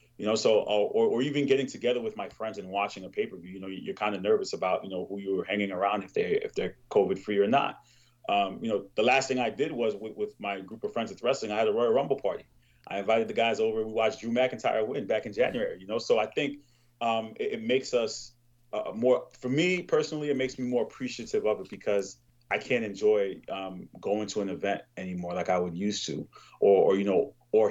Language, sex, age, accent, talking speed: English, male, 30-49, American, 250 wpm